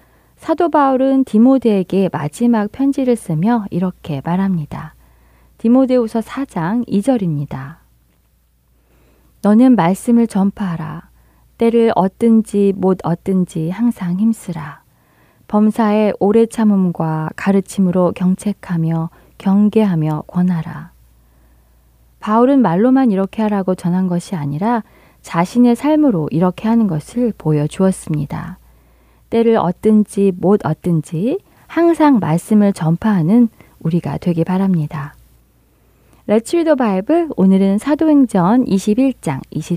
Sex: female